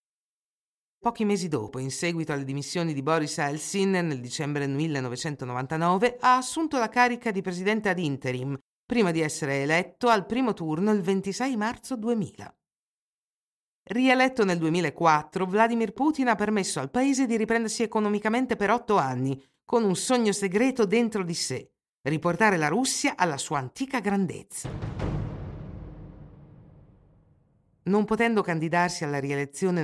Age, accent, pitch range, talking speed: 50-69, native, 155-230 Hz, 135 wpm